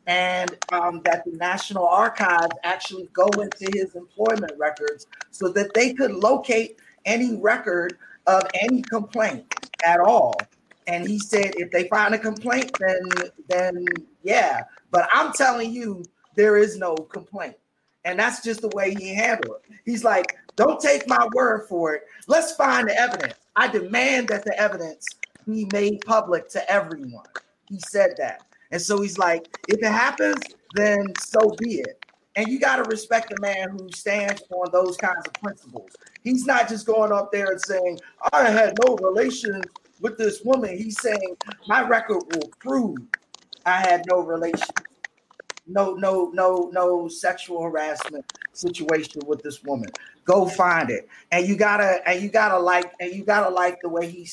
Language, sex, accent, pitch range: English, male, American, 180-225 Hz